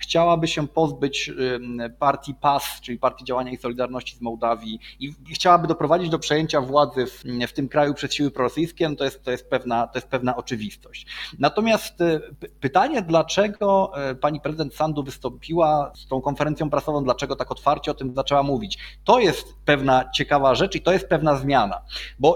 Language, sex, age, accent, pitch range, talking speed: Polish, male, 30-49, native, 135-175 Hz, 160 wpm